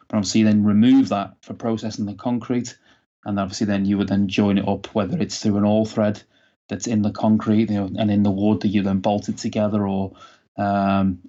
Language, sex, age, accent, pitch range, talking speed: English, male, 20-39, British, 100-110 Hz, 220 wpm